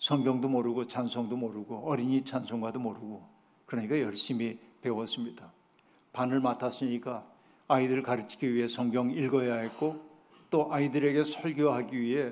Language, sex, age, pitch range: Korean, male, 60-79, 120-155 Hz